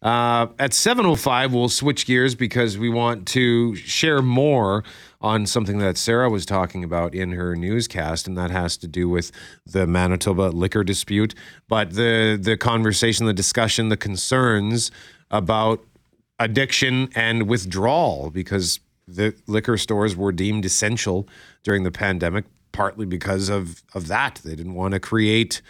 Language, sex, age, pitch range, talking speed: English, male, 40-59, 90-115 Hz, 150 wpm